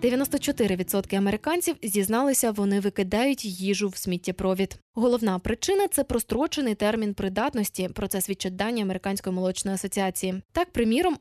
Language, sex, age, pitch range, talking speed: Ukrainian, female, 10-29, 200-255 Hz, 130 wpm